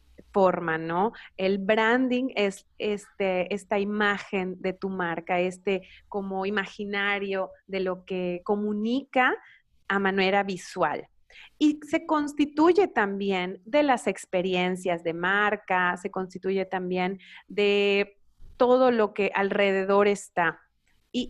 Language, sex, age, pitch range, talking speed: Spanish, female, 30-49, 190-235 Hz, 105 wpm